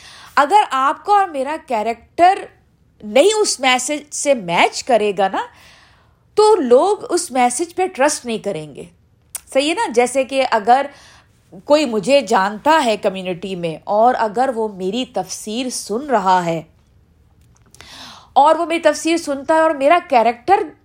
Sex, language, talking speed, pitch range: female, Urdu, 150 wpm, 225-320 Hz